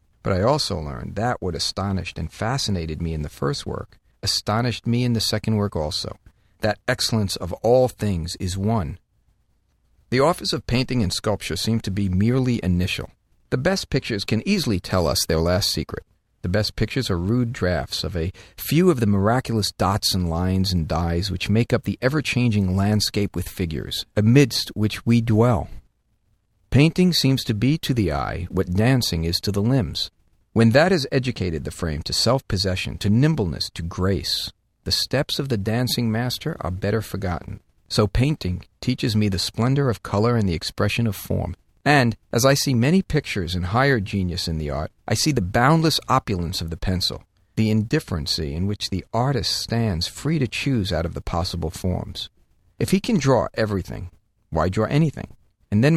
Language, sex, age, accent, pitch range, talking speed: English, male, 50-69, American, 90-120 Hz, 180 wpm